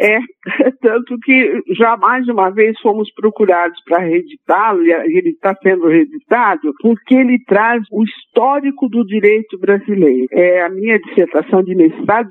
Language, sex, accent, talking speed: Portuguese, male, Brazilian, 150 wpm